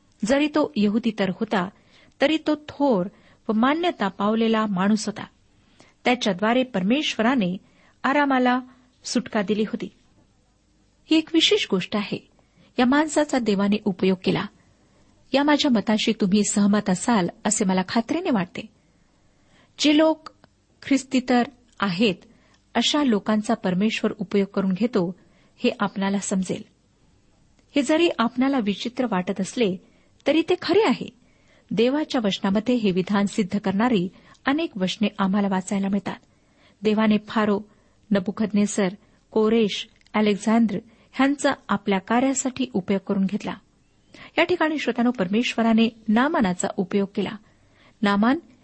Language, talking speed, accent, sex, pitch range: Marathi, 115 wpm, native, female, 200-255 Hz